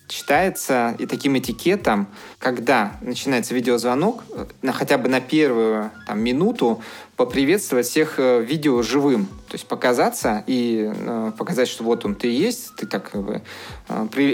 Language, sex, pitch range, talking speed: Russian, male, 120-145 Hz, 145 wpm